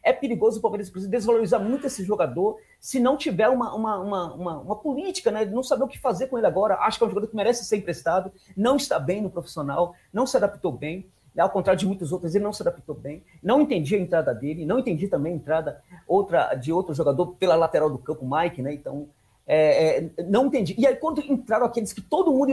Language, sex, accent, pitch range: Portuguese, male, Brazilian, 180-265 Hz